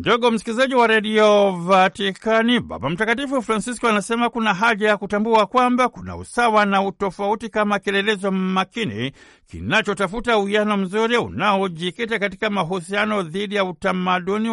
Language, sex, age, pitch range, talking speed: Swahili, male, 60-79, 190-220 Hz, 125 wpm